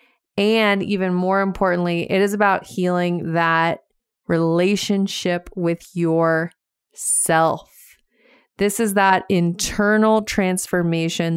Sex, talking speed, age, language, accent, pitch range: female, 95 wpm, 20-39, English, American, 170-200 Hz